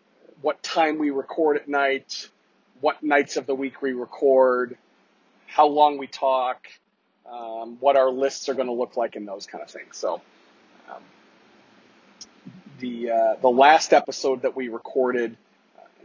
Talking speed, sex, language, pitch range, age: 155 wpm, male, English, 120-145 Hz, 40-59